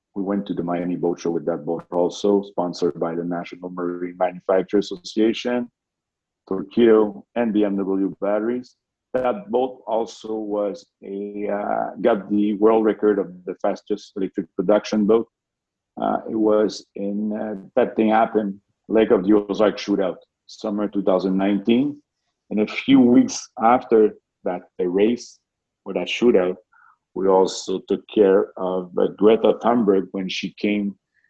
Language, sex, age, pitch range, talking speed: English, male, 50-69, 90-105 Hz, 145 wpm